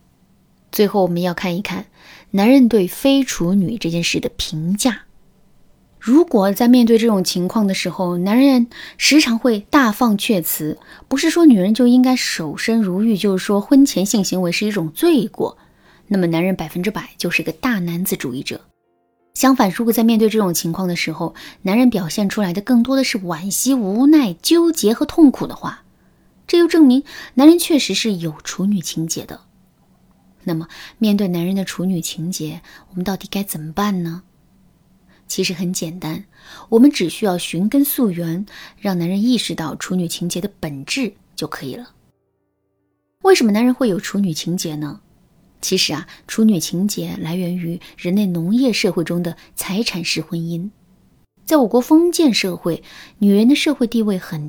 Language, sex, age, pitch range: Chinese, female, 20-39, 175-235 Hz